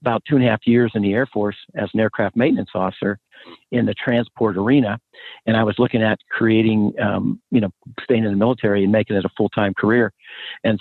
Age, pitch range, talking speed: 50-69, 105-120 Hz, 215 wpm